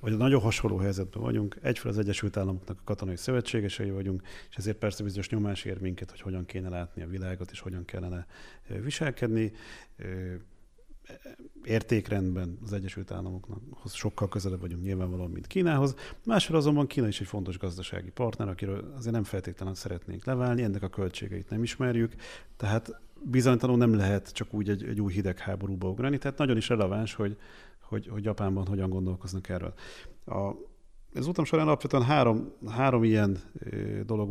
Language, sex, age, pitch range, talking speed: Hungarian, male, 40-59, 95-115 Hz, 155 wpm